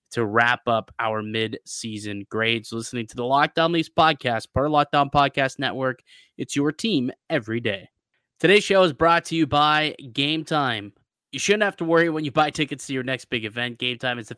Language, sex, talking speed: English, male, 205 wpm